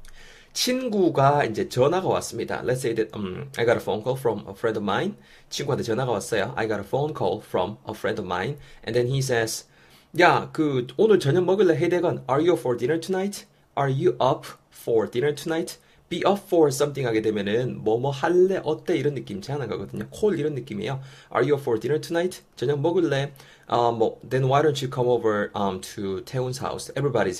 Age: 30-49